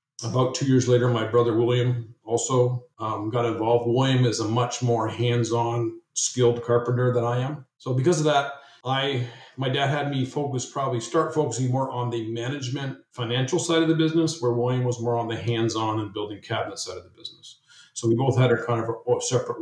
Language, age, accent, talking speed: English, 50-69, American, 200 wpm